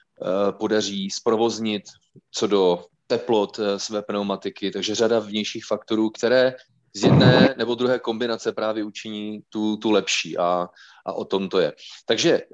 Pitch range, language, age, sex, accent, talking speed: 100-120 Hz, Czech, 30-49, male, native, 140 wpm